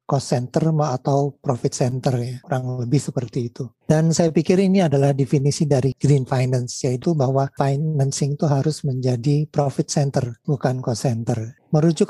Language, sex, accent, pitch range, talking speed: Indonesian, male, native, 135-155 Hz, 150 wpm